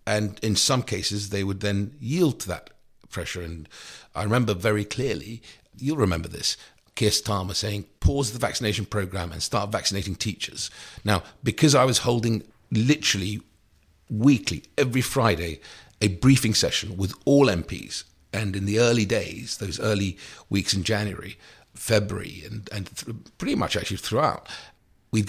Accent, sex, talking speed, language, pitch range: British, male, 150 wpm, English, 95-110 Hz